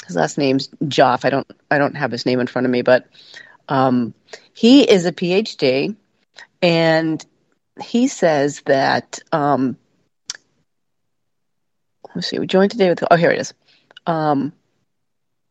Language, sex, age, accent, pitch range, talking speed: English, female, 40-59, American, 150-190 Hz, 145 wpm